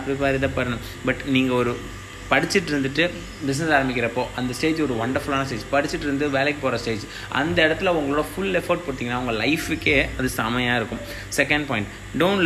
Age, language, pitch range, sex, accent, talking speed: 20-39, Tamil, 125-165 Hz, male, native, 55 wpm